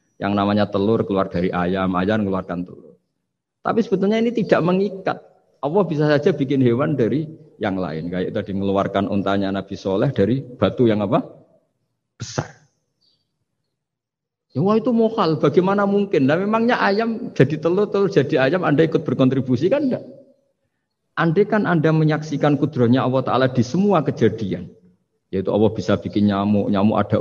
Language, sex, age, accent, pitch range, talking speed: Indonesian, male, 50-69, native, 100-150 Hz, 150 wpm